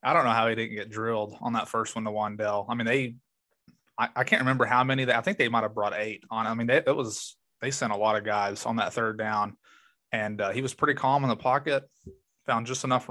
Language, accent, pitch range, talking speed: English, American, 110-125 Hz, 270 wpm